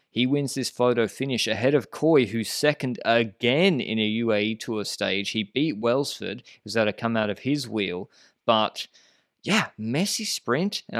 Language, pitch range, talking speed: English, 110-145 Hz, 175 wpm